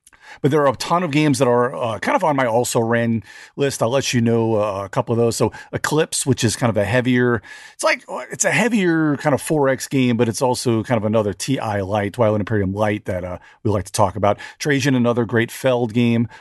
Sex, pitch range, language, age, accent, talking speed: male, 105-130 Hz, English, 40-59, American, 240 wpm